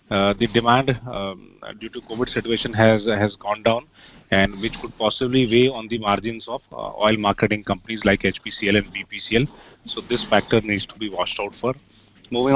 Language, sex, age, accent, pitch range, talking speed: English, male, 30-49, Indian, 110-130 Hz, 190 wpm